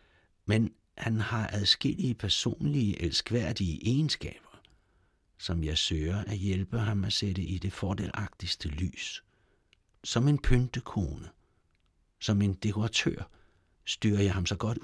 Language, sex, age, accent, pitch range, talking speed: Danish, male, 60-79, native, 85-105 Hz, 120 wpm